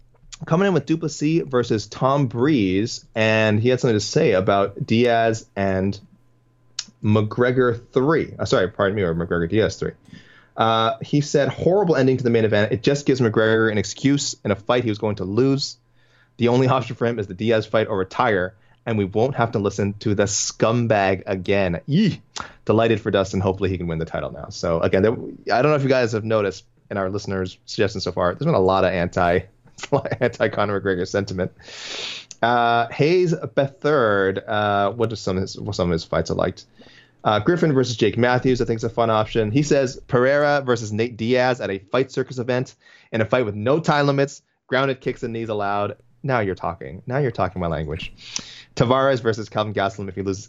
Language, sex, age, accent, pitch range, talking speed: English, male, 20-39, American, 100-130 Hz, 205 wpm